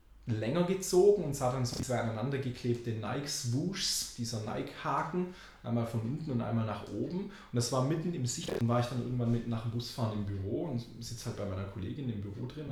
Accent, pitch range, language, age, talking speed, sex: German, 100-130 Hz, German, 20-39, 210 wpm, male